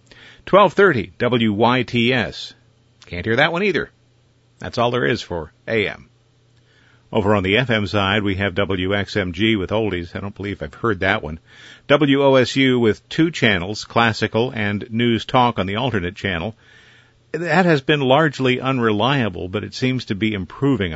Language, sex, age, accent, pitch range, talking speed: English, male, 50-69, American, 105-120 Hz, 150 wpm